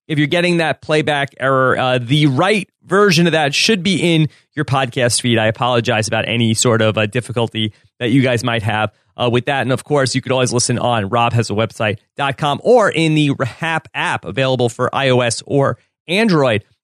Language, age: English, 30-49